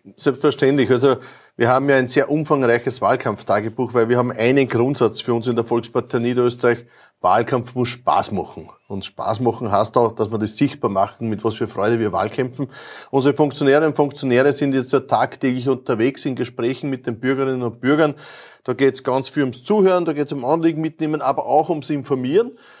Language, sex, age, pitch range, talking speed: German, male, 30-49, 125-150 Hz, 190 wpm